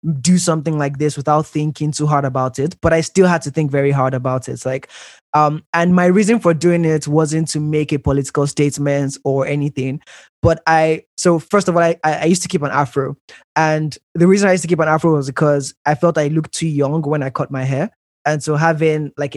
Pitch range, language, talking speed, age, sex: 140-165 Hz, English, 235 wpm, 20-39, male